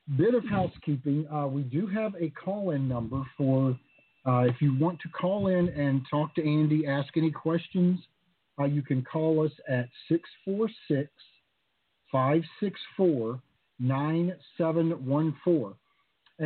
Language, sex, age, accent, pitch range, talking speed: English, male, 50-69, American, 140-165 Hz, 115 wpm